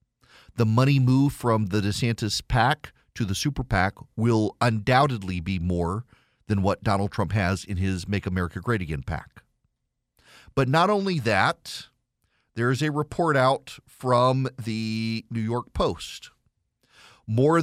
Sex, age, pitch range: male, 40-59, 110-145 Hz